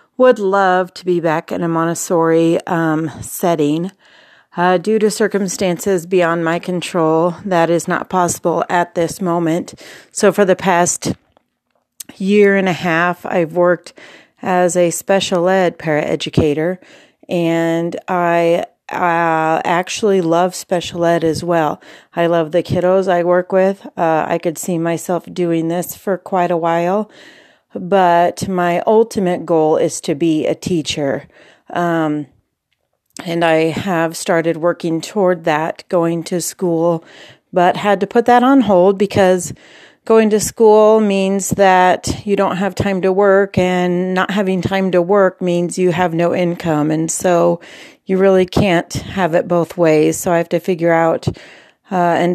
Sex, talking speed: female, 150 wpm